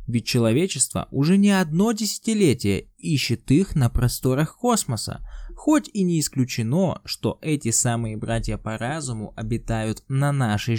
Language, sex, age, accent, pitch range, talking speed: Russian, male, 20-39, native, 115-170 Hz, 135 wpm